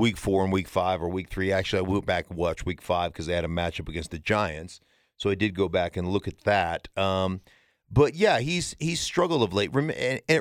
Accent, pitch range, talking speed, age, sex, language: American, 95-130 Hz, 240 wpm, 40-59, male, English